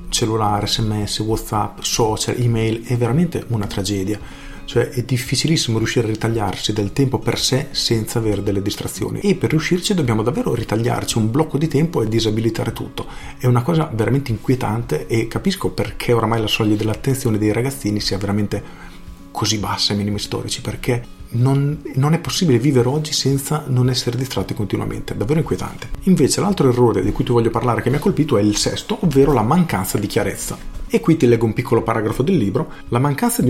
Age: 40-59